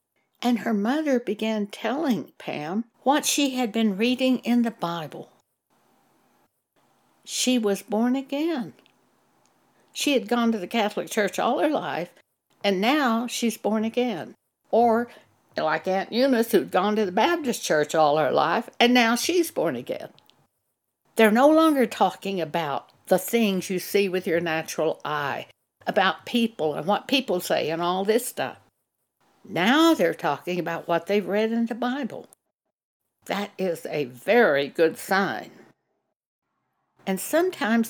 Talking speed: 145 wpm